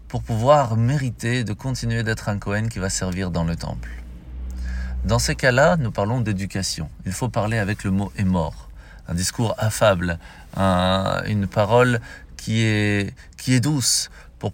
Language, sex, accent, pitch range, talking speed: French, male, French, 95-120 Hz, 175 wpm